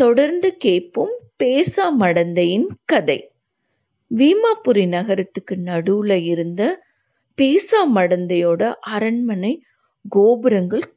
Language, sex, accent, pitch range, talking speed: Tamil, female, native, 185-300 Hz, 70 wpm